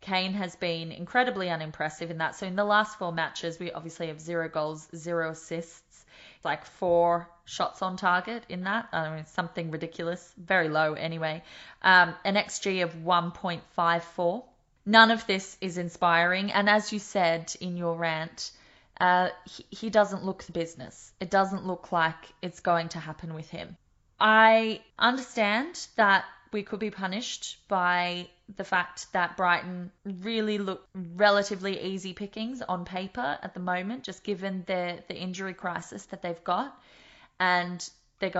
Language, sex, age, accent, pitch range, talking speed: English, female, 20-39, Australian, 170-205 Hz, 160 wpm